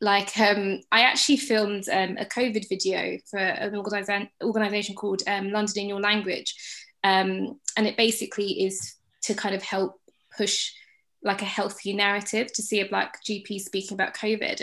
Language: English